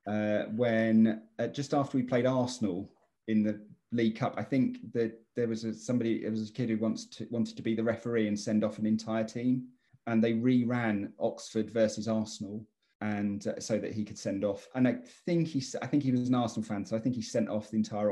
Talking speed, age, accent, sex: 220 wpm, 30-49, British, male